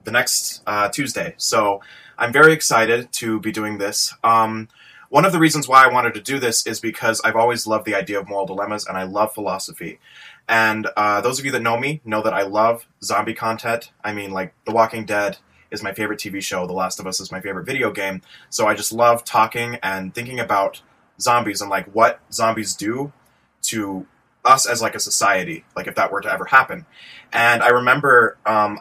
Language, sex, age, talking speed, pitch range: English, male, 20-39, 210 wpm, 105-120 Hz